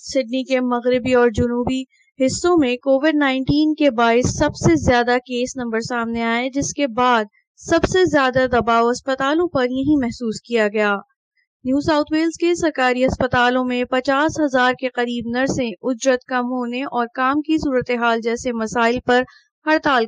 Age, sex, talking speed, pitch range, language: 20-39, female, 165 wpm, 225-270 Hz, Urdu